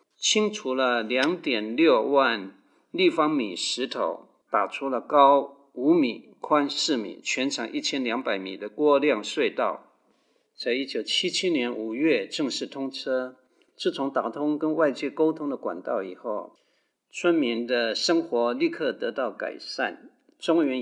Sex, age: male, 50-69